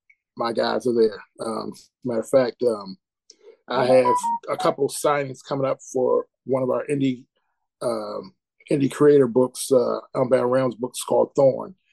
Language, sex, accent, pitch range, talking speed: English, male, American, 125-155 Hz, 160 wpm